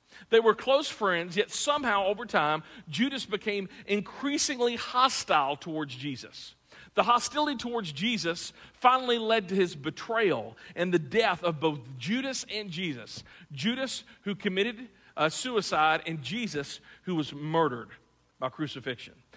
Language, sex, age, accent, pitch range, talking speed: English, male, 50-69, American, 160-235 Hz, 135 wpm